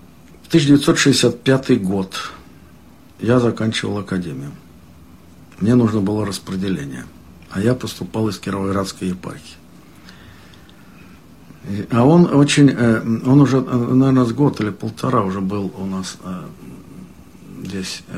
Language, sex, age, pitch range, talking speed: Russian, male, 60-79, 95-135 Hz, 95 wpm